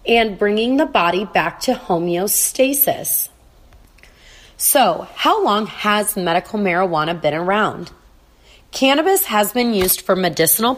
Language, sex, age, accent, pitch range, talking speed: English, female, 30-49, American, 175-215 Hz, 115 wpm